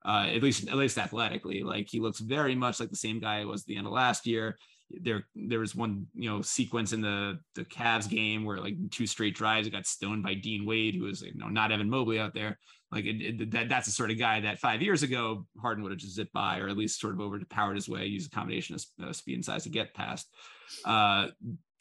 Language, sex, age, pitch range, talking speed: English, male, 20-39, 105-125 Hz, 255 wpm